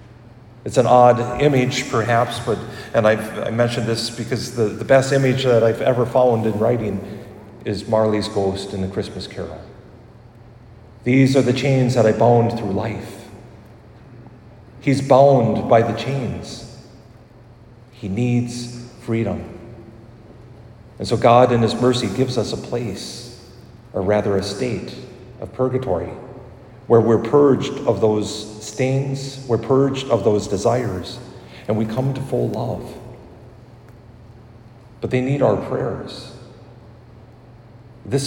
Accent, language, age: American, English, 40-59